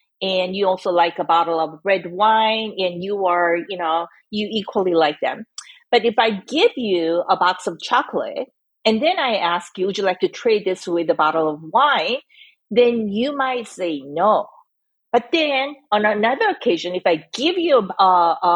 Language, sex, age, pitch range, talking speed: English, female, 40-59, 180-270 Hz, 190 wpm